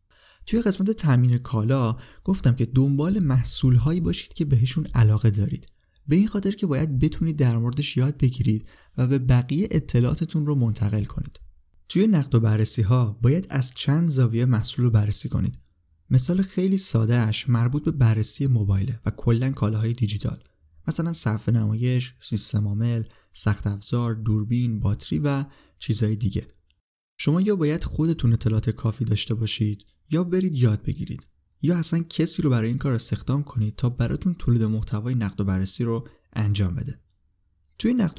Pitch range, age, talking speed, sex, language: 110-145 Hz, 30-49, 155 wpm, male, Persian